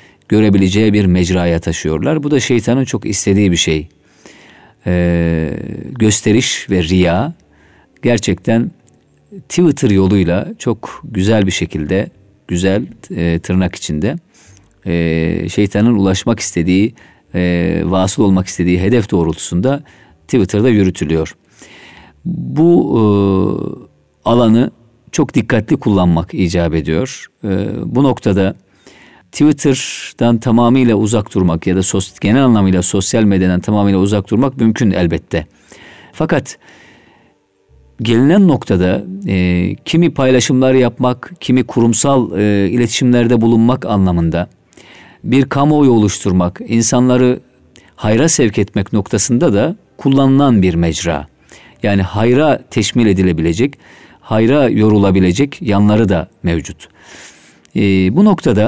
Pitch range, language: 90-120 Hz, Turkish